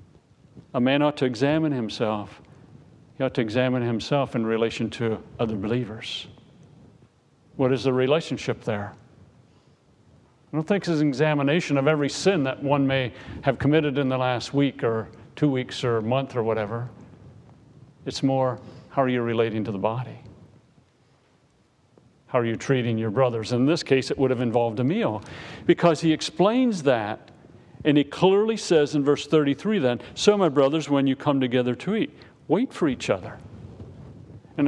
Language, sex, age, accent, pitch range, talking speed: English, male, 50-69, American, 115-150 Hz, 170 wpm